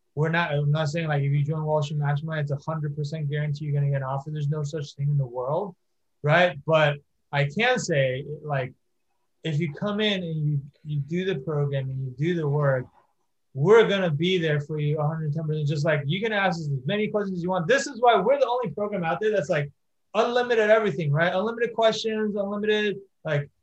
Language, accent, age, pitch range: English, American, 20-39, 145-185 Hz